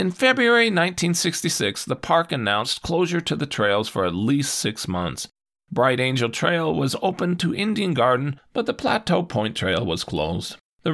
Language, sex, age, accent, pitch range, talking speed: English, male, 40-59, American, 100-130 Hz, 170 wpm